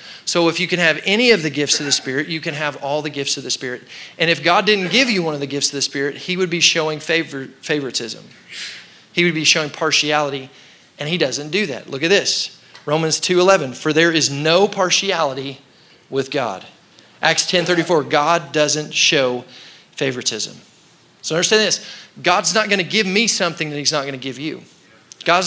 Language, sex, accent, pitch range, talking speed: English, male, American, 140-180 Hz, 200 wpm